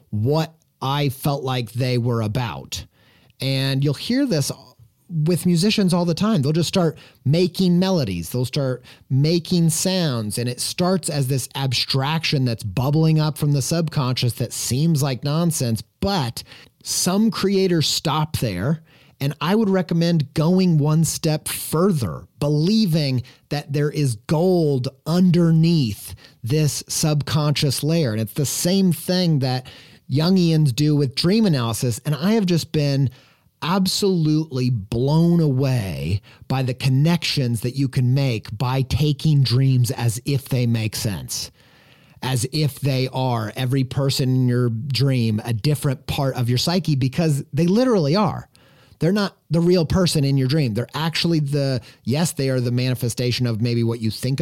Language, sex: English, male